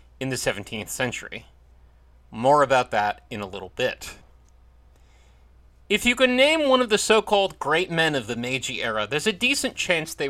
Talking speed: 175 wpm